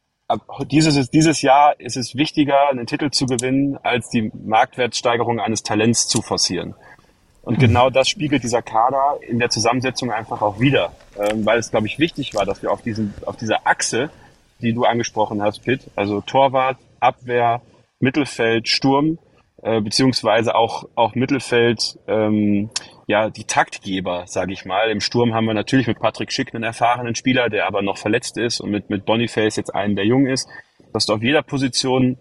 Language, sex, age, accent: German, male, 30-49, German